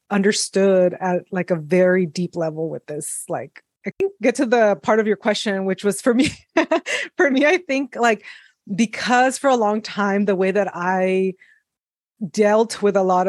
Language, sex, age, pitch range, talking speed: English, female, 20-39, 170-205 Hz, 185 wpm